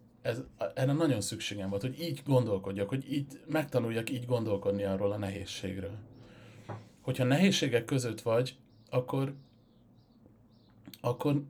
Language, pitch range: Hungarian, 110-130 Hz